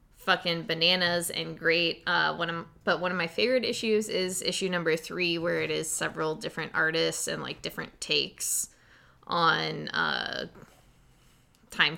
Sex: female